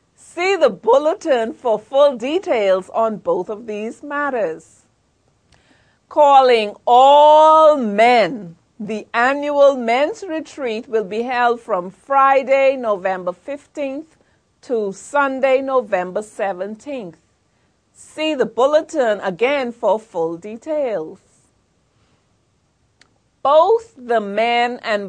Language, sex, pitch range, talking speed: English, female, 210-275 Hz, 95 wpm